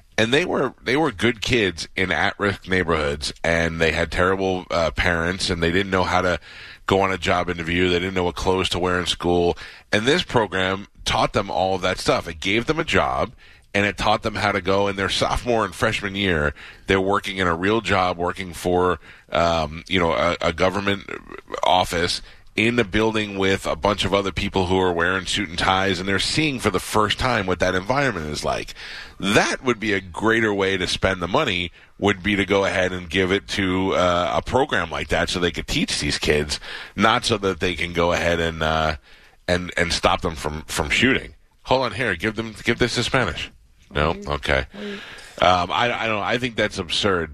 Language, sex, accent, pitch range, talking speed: English, male, American, 85-100 Hz, 215 wpm